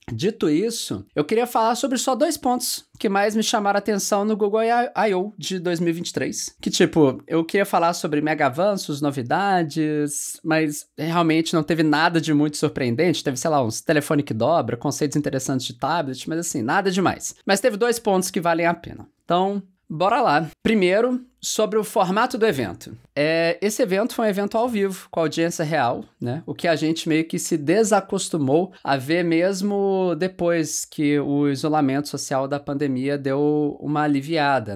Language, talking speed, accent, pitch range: English, 180 wpm, Brazilian, 145-205 Hz